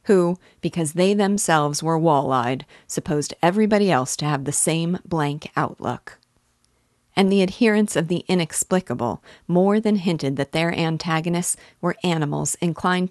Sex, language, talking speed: female, English, 135 wpm